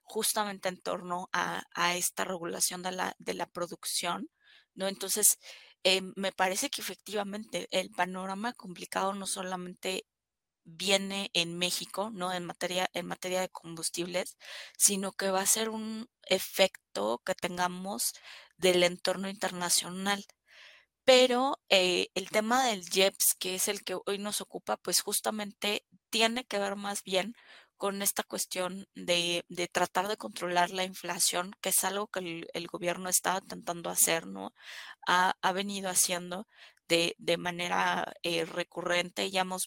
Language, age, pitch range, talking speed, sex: Spanish, 20-39, 175-200 Hz, 145 wpm, female